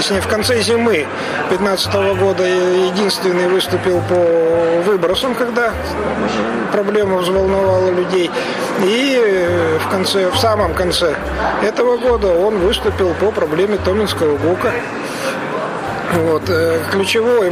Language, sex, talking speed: Russian, male, 90 wpm